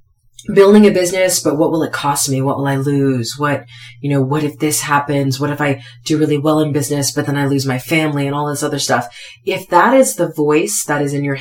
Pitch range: 135-170 Hz